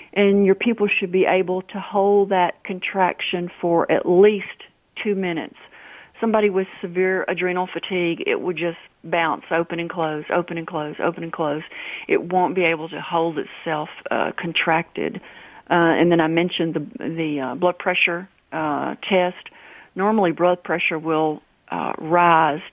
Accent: American